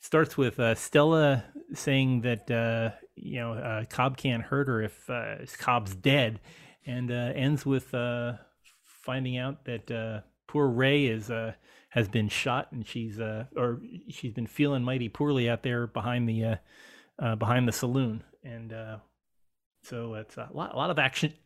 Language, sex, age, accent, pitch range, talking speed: English, male, 30-49, American, 115-140 Hz, 175 wpm